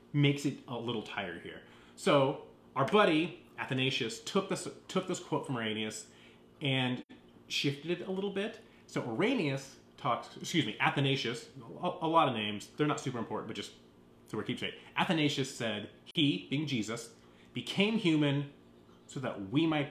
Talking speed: 165 wpm